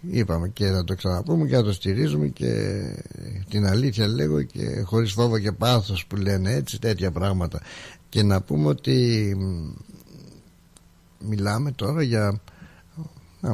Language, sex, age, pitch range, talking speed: Greek, male, 60-79, 90-115 Hz, 135 wpm